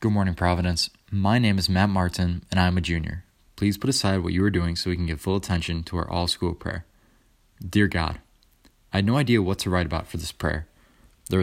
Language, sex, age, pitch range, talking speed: English, male, 20-39, 90-105 Hz, 230 wpm